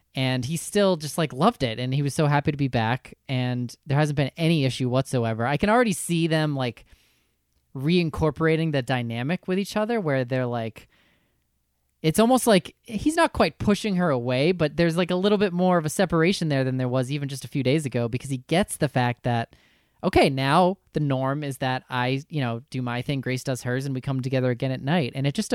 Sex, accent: male, American